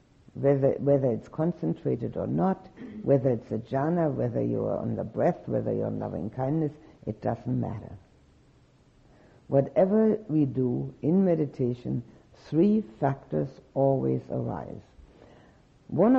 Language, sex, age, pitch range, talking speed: English, female, 60-79, 110-155 Hz, 120 wpm